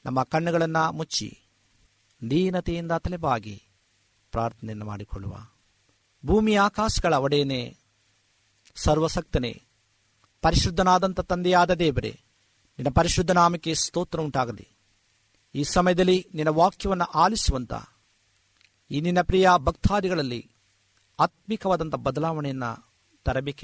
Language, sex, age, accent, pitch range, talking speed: Polish, male, 50-69, Indian, 105-170 Hz, 60 wpm